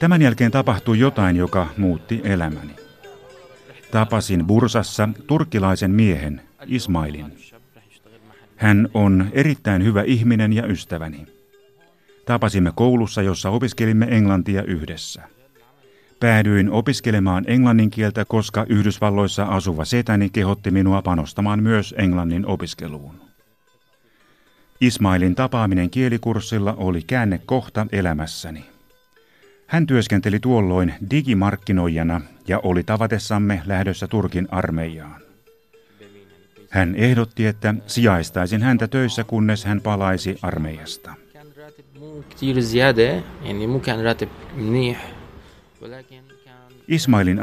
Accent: native